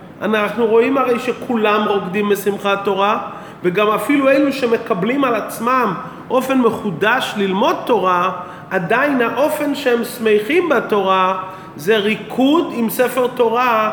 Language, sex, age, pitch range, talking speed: Hebrew, male, 40-59, 170-215 Hz, 115 wpm